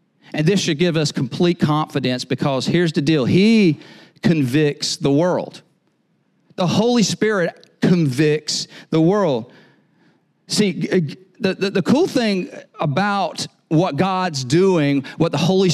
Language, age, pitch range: English, 40-59, 155-205 Hz